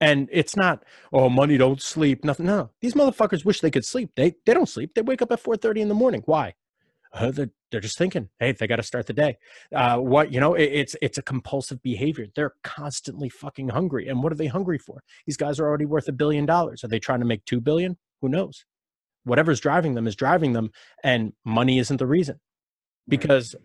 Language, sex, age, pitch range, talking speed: English, male, 30-49, 135-180 Hz, 225 wpm